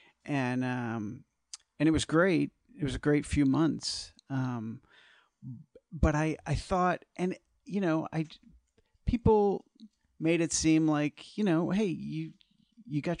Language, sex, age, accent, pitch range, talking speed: English, male, 40-59, American, 125-165 Hz, 145 wpm